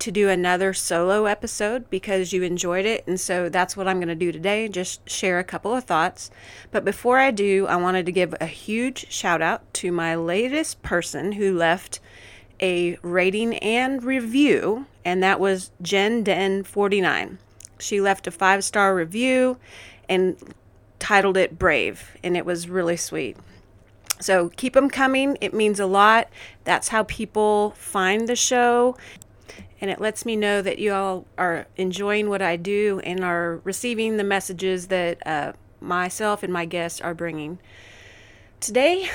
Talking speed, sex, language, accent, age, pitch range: 165 wpm, female, English, American, 30-49, 175-215 Hz